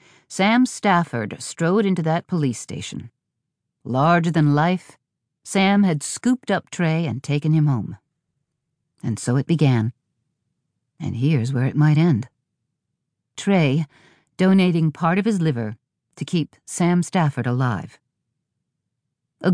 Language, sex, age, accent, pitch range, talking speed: English, female, 50-69, American, 135-180 Hz, 125 wpm